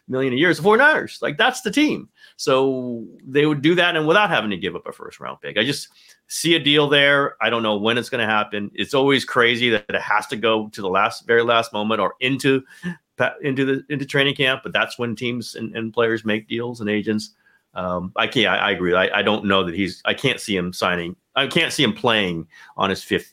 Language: English